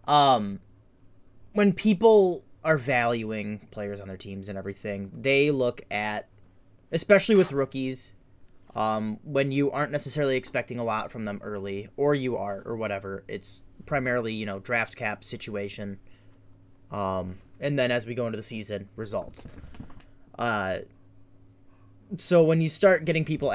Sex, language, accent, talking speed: male, English, American, 145 wpm